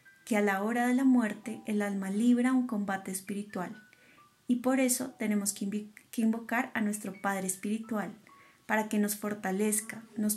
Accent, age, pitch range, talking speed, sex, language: Colombian, 30-49, 200-235 Hz, 170 wpm, female, Spanish